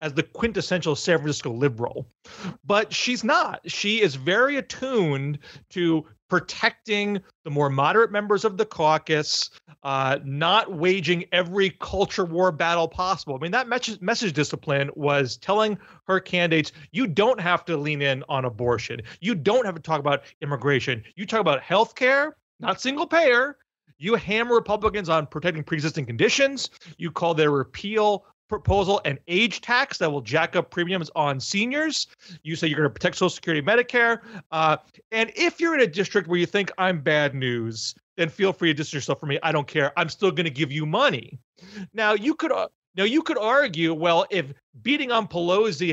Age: 40-59